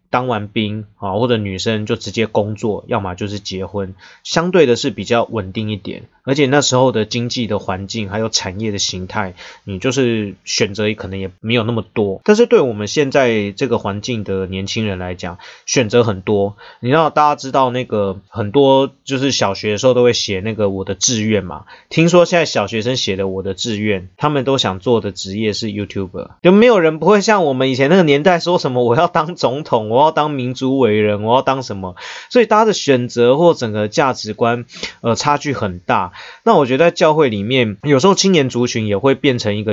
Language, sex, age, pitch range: Chinese, male, 20-39, 100-130 Hz